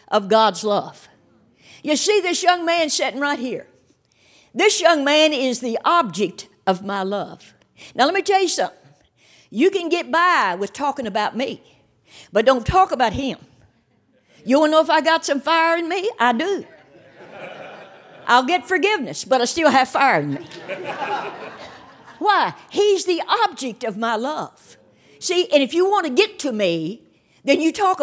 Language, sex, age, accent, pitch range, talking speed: English, female, 60-79, American, 260-360 Hz, 175 wpm